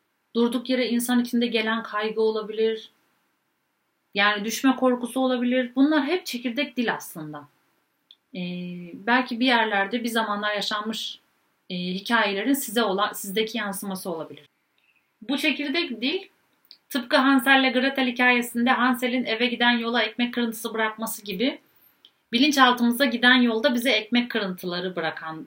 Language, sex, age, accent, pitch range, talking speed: Turkish, female, 40-59, native, 205-255 Hz, 125 wpm